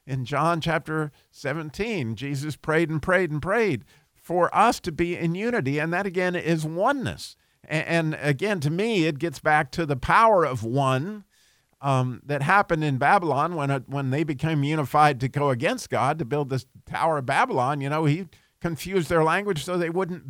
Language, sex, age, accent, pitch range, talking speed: English, male, 50-69, American, 135-175 Hz, 185 wpm